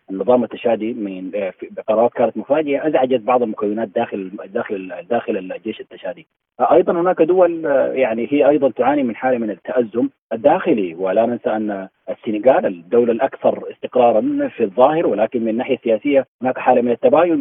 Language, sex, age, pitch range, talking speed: Arabic, male, 30-49, 110-140 Hz, 150 wpm